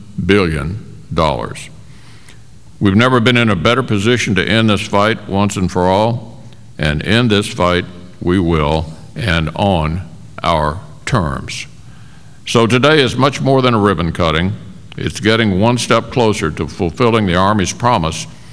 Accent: American